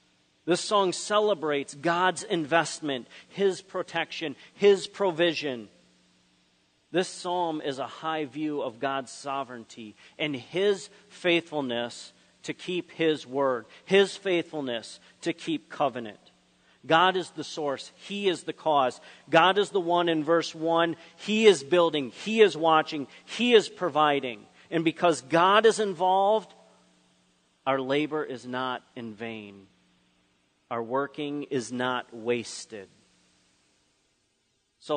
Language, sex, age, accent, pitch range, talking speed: English, male, 40-59, American, 125-175 Hz, 120 wpm